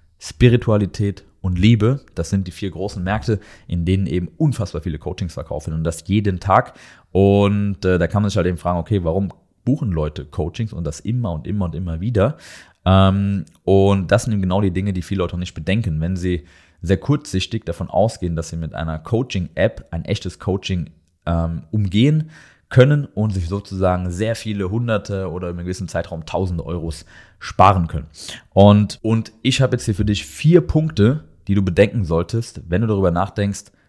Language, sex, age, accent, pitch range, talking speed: German, male, 30-49, German, 85-110 Hz, 190 wpm